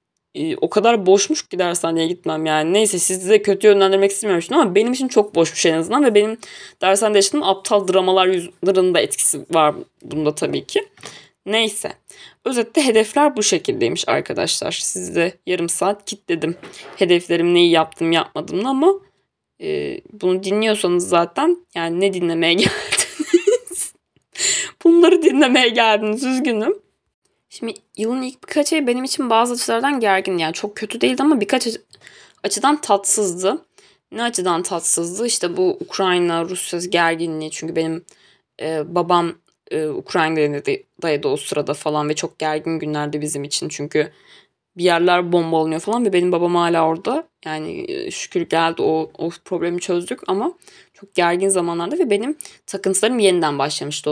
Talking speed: 140 wpm